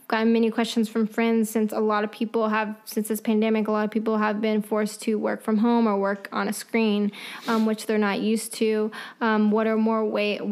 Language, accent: English, American